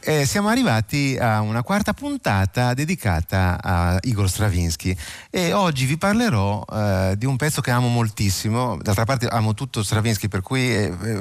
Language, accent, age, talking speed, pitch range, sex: Italian, native, 30-49, 155 wpm, 95-120 Hz, male